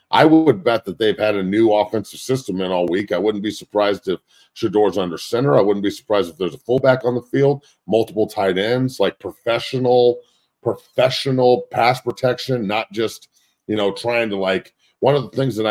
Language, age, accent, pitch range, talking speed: English, 40-59, American, 100-130 Hz, 200 wpm